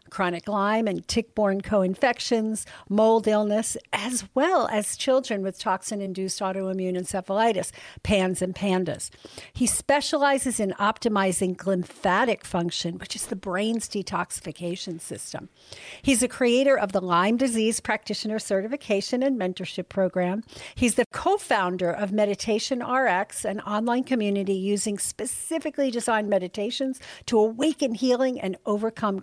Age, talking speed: 50-69, 125 wpm